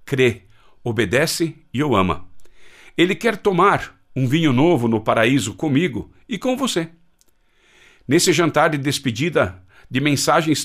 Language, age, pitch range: Portuguese, 60-79, 115-175 Hz